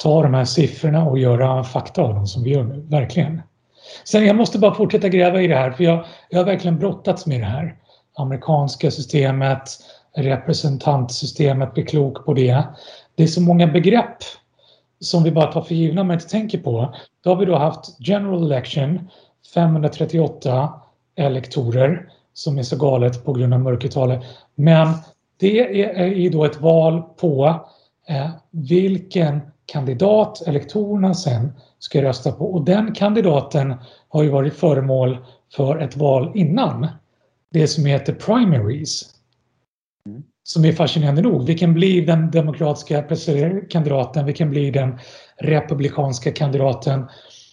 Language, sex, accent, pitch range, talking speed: Swedish, male, native, 135-175 Hz, 150 wpm